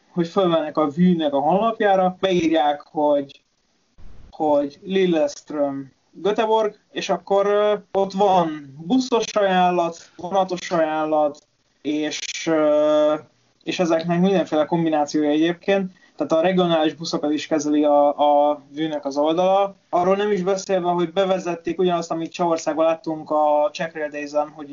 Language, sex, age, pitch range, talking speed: Hungarian, male, 20-39, 150-175 Hz, 120 wpm